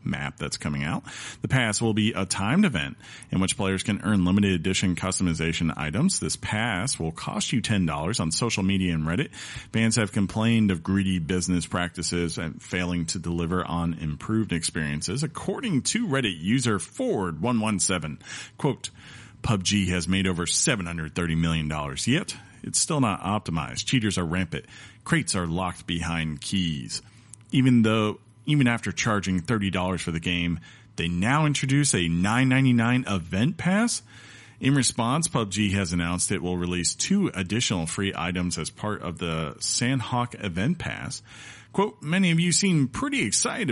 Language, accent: English, American